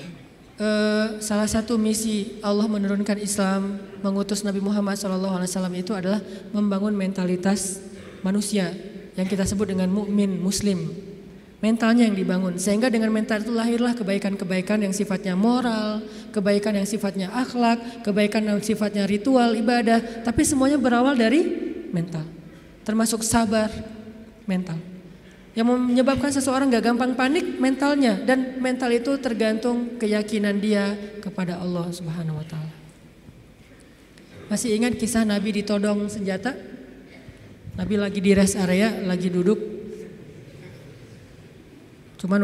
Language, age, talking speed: Indonesian, 20-39, 115 wpm